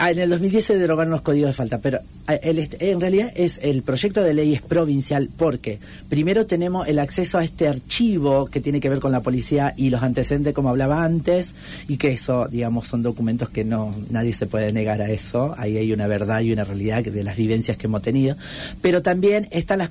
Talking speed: 220 wpm